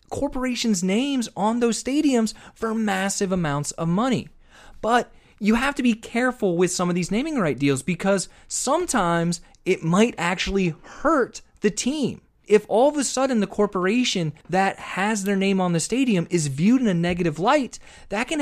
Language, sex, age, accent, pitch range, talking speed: English, male, 30-49, American, 180-245 Hz, 175 wpm